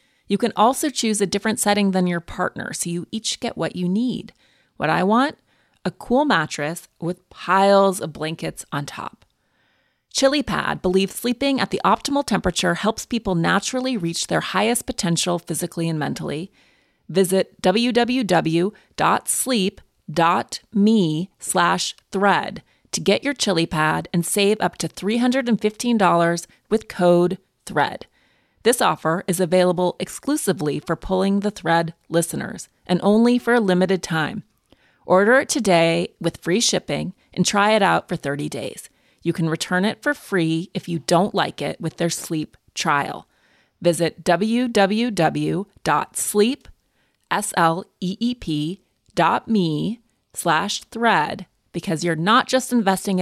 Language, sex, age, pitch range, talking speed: English, female, 30-49, 170-220 Hz, 125 wpm